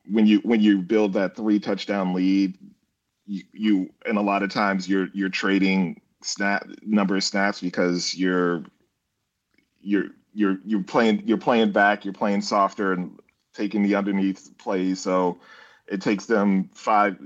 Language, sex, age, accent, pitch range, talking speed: English, male, 40-59, American, 95-105 Hz, 155 wpm